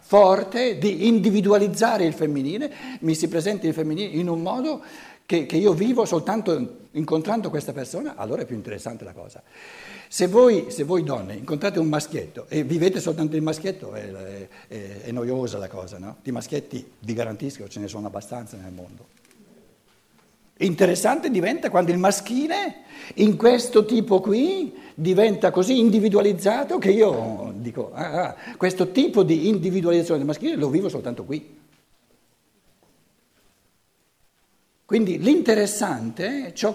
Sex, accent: male, native